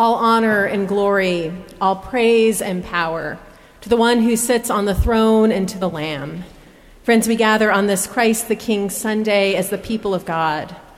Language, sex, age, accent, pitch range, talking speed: English, female, 30-49, American, 195-230 Hz, 185 wpm